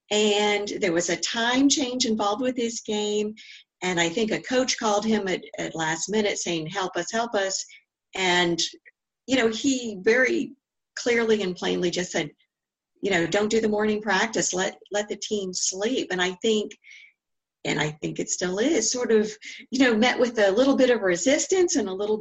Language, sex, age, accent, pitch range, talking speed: English, female, 50-69, American, 190-255 Hz, 190 wpm